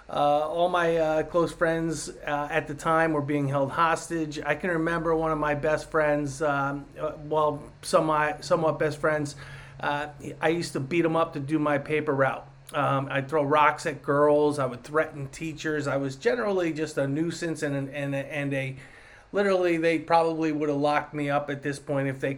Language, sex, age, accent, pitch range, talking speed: English, male, 30-49, American, 140-155 Hz, 205 wpm